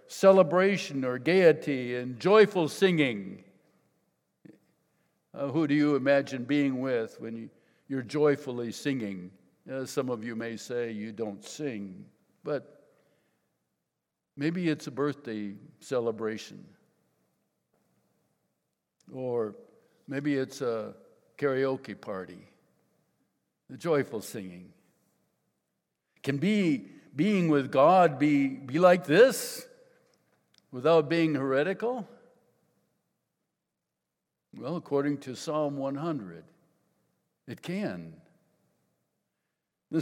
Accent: American